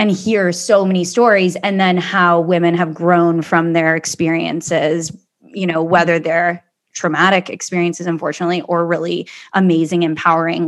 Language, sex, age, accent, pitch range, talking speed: English, female, 20-39, American, 170-195 Hz, 140 wpm